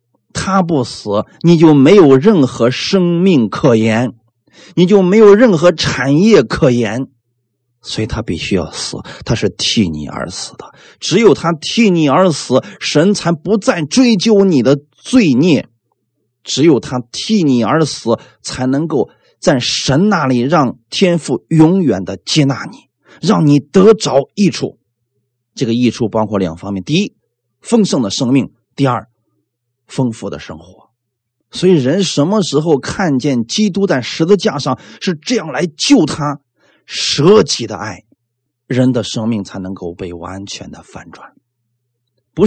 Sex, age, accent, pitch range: male, 30-49, native, 120-185 Hz